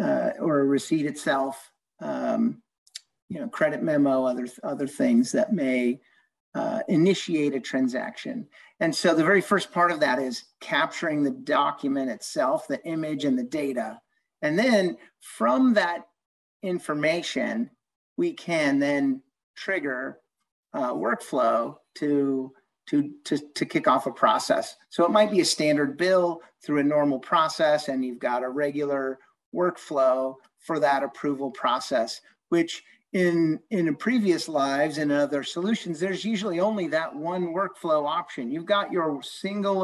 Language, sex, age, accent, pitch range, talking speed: English, male, 50-69, American, 140-200 Hz, 145 wpm